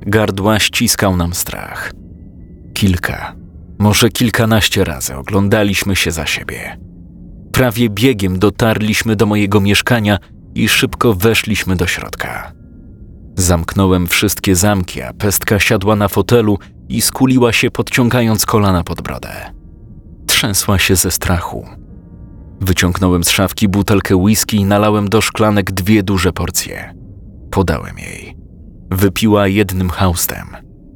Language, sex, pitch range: Polish, male, 90-110 Hz